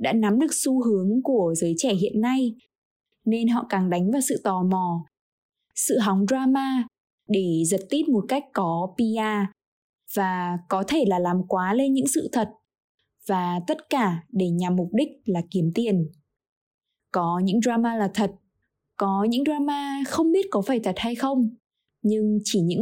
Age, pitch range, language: 20-39, 190-255 Hz, Vietnamese